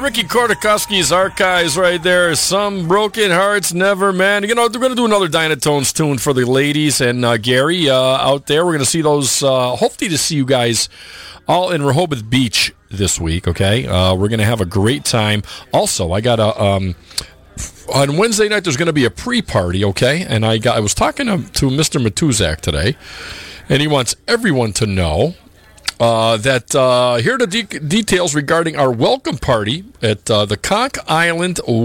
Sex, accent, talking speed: male, American, 195 wpm